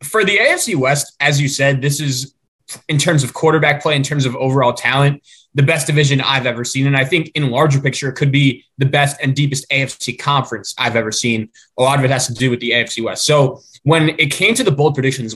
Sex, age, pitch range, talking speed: male, 20-39, 130-160 Hz, 240 wpm